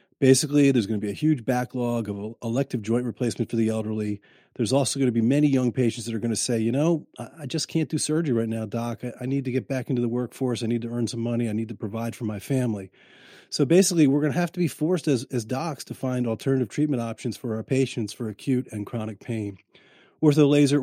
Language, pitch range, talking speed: English, 115-140 Hz, 245 wpm